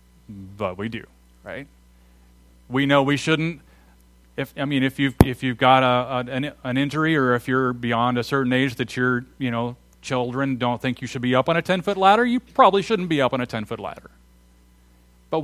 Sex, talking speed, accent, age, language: male, 210 wpm, American, 40-59, English